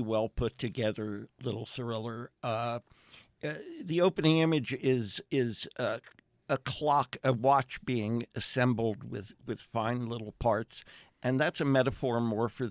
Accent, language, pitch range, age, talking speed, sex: American, English, 110-130 Hz, 60-79, 135 wpm, male